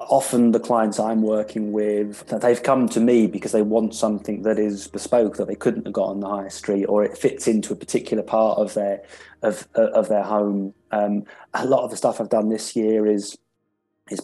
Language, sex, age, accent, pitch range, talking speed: English, male, 20-39, British, 110-125 Hz, 215 wpm